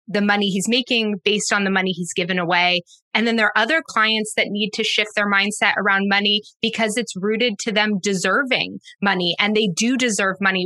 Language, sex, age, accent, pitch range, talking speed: English, female, 20-39, American, 180-225 Hz, 210 wpm